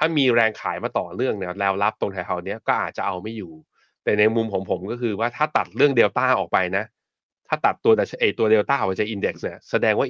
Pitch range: 100-130 Hz